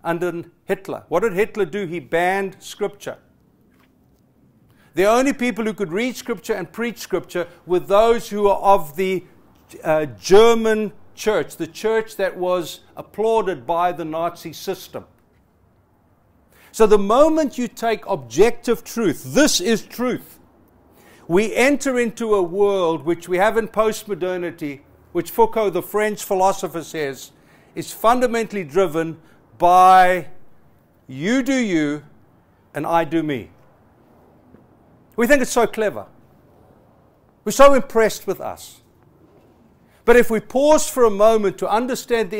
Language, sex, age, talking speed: English, male, 60-79, 135 wpm